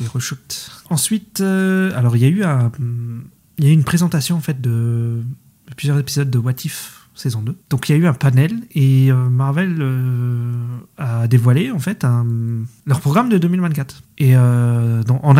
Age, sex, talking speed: 30-49, male, 170 wpm